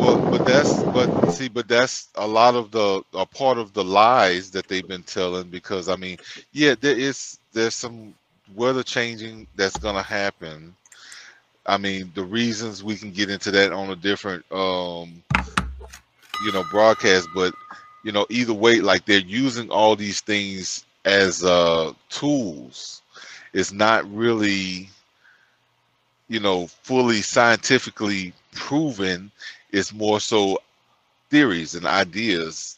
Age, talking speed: 30-49, 140 wpm